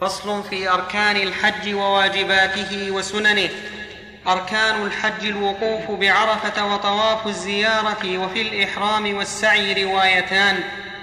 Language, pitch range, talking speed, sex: Arabic, 200-220 Hz, 85 wpm, male